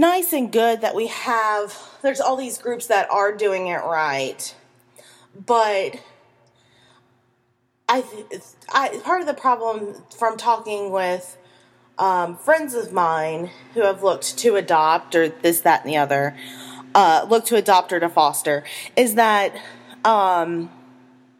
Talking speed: 140 wpm